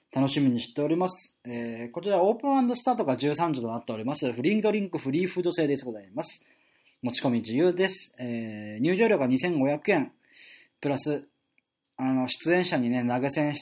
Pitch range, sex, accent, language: 125-180 Hz, male, native, Japanese